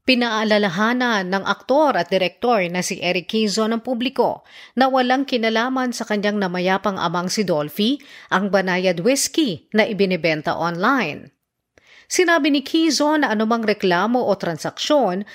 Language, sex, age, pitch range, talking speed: Filipino, female, 40-59, 180-250 Hz, 135 wpm